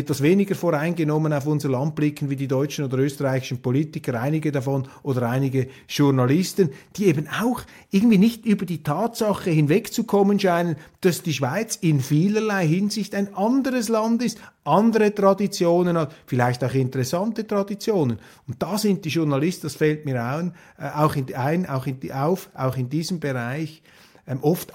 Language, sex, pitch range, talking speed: German, male, 135-185 Hz, 155 wpm